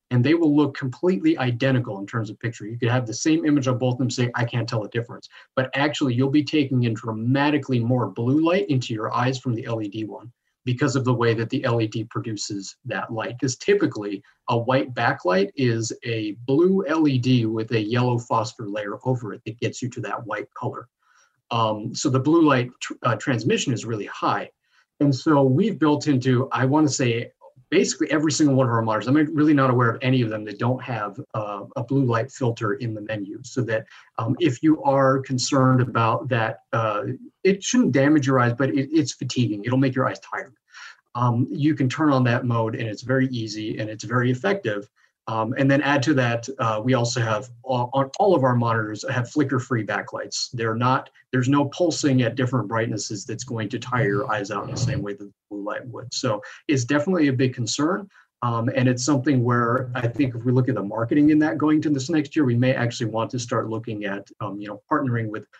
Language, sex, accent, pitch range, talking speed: English, male, American, 115-140 Hz, 220 wpm